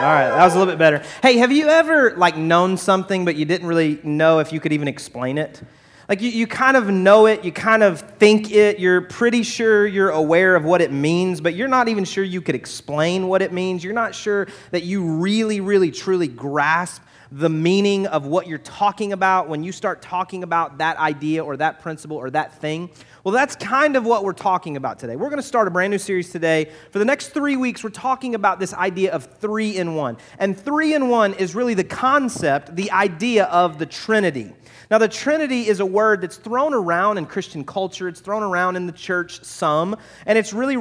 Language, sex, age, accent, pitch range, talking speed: English, male, 30-49, American, 165-210 Hz, 225 wpm